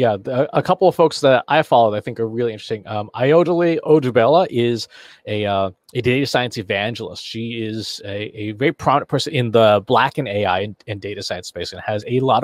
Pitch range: 105-135 Hz